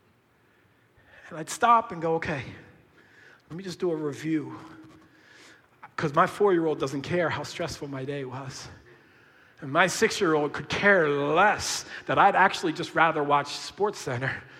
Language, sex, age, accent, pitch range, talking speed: English, male, 40-59, American, 145-235 Hz, 150 wpm